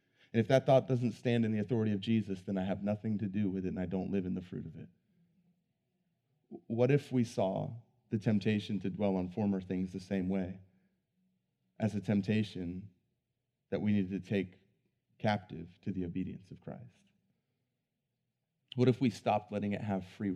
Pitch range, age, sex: 100-135 Hz, 30-49, male